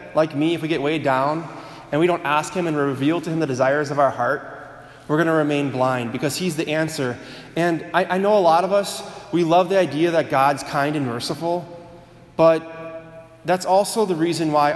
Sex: male